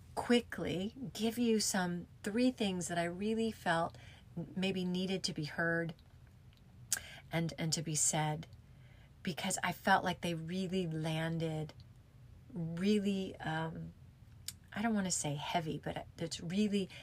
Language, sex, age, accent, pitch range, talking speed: English, female, 30-49, American, 125-180 Hz, 135 wpm